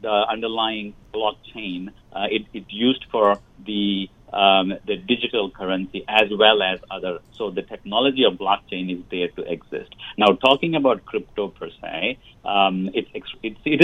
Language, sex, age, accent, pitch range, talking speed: English, male, 50-69, Indian, 95-130 Hz, 155 wpm